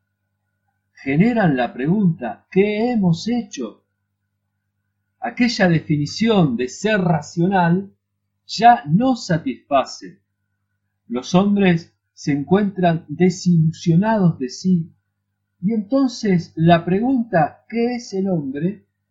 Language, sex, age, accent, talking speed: Spanish, male, 40-59, Argentinian, 90 wpm